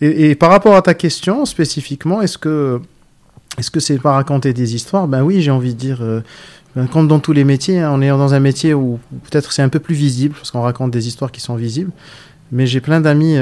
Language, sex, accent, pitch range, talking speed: French, male, French, 125-150 Hz, 240 wpm